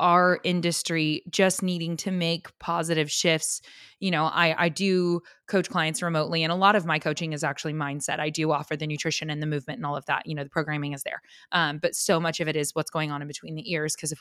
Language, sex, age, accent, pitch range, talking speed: English, female, 20-39, American, 160-200 Hz, 250 wpm